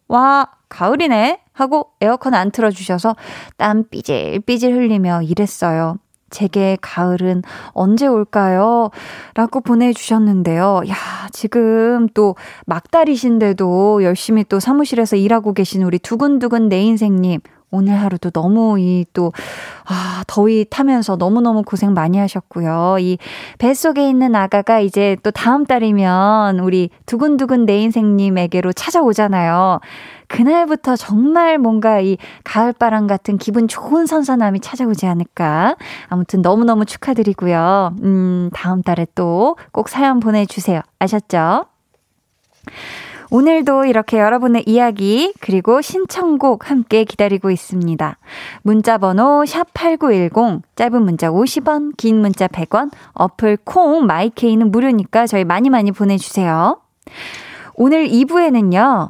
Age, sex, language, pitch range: 20-39, female, Korean, 190-250 Hz